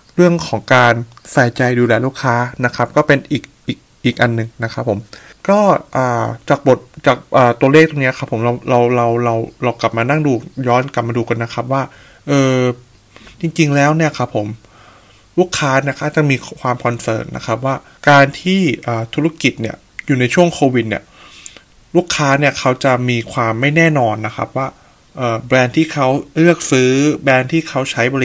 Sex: male